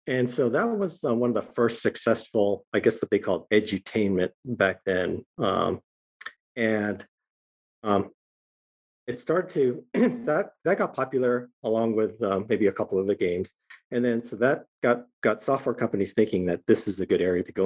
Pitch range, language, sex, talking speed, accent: 95-120 Hz, English, male, 180 wpm, American